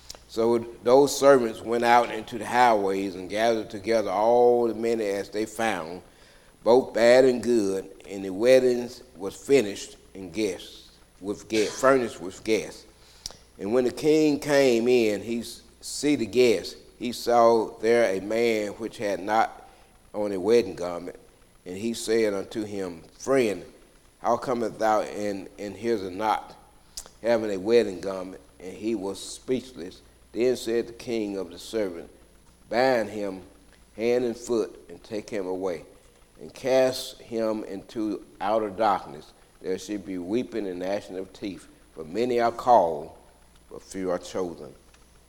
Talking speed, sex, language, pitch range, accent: 150 wpm, male, English, 100-120 Hz, American